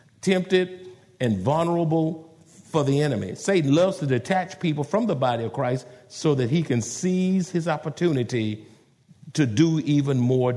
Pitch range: 130-185 Hz